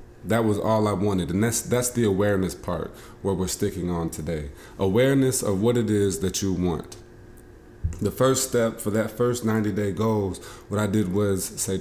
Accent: American